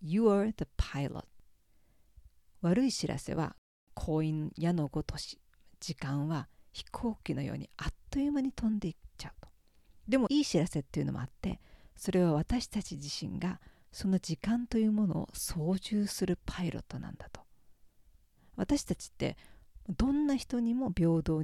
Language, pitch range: Japanese, 155-225 Hz